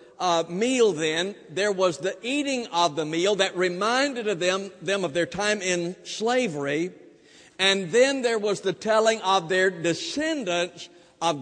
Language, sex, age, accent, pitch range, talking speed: English, male, 60-79, American, 165-220 Hz, 160 wpm